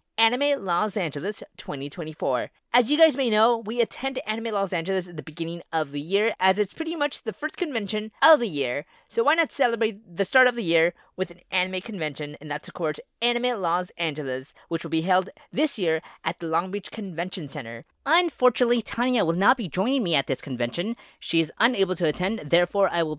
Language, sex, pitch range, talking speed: English, female, 160-235 Hz, 205 wpm